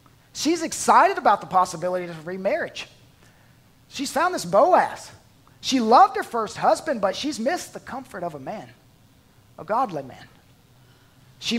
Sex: male